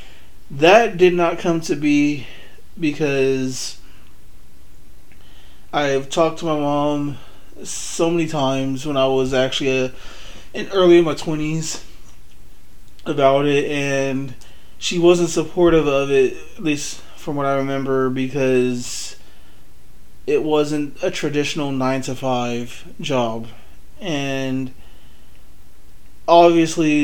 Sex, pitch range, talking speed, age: male, 125-150 Hz, 115 wpm, 30-49